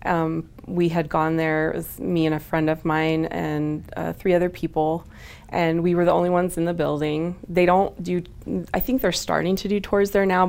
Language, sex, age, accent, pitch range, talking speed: English, female, 20-39, American, 150-180 Hz, 225 wpm